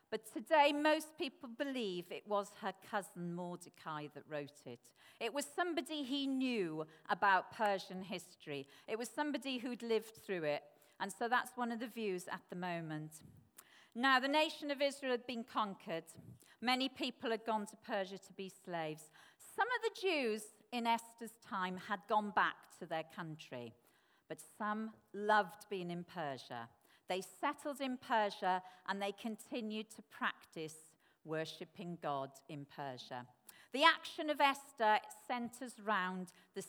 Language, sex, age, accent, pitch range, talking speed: English, female, 40-59, British, 180-250 Hz, 155 wpm